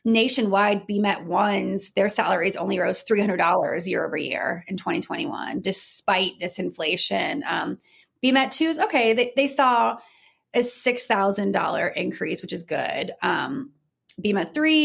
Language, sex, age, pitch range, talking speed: English, female, 30-49, 195-250 Hz, 125 wpm